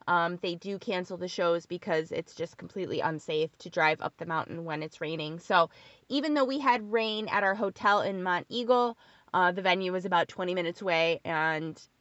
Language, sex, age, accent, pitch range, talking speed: English, female, 20-39, American, 175-225 Hz, 200 wpm